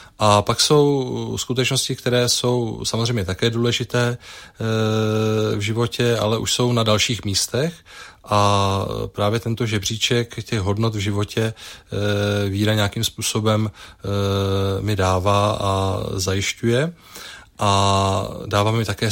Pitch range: 100-120 Hz